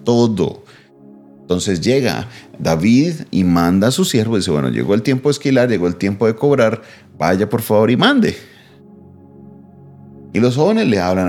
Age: 30-49